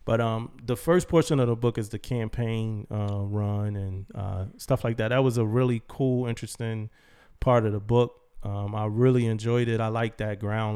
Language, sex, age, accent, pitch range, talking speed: English, male, 20-39, American, 100-120 Hz, 205 wpm